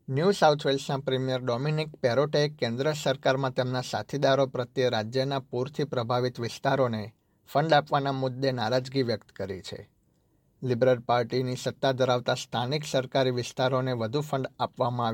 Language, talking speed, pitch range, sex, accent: Gujarati, 135 wpm, 125-145 Hz, male, native